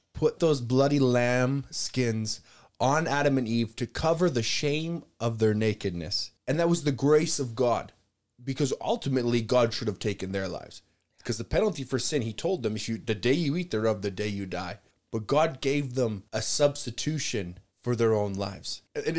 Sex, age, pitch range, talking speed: male, 20-39, 100-135 Hz, 190 wpm